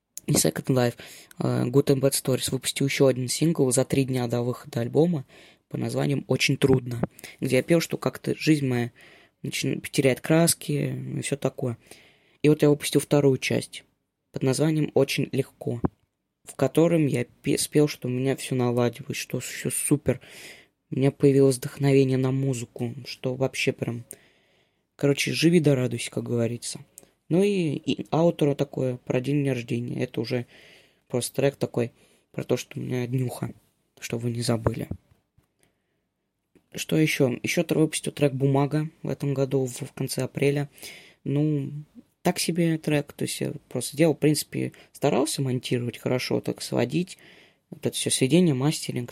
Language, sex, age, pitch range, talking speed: Russian, female, 20-39, 125-150 Hz, 160 wpm